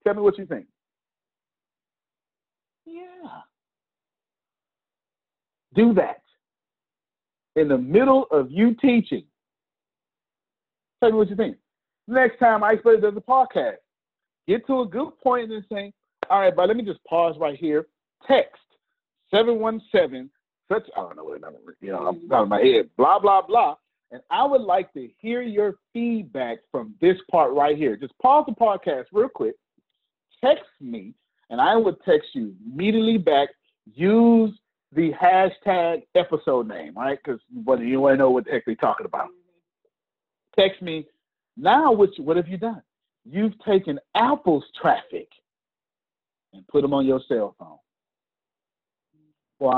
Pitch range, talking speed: 155-255 Hz, 155 wpm